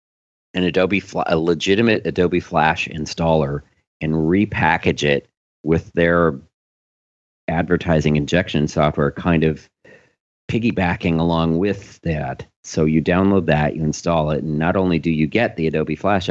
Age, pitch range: 40-59, 75-90 Hz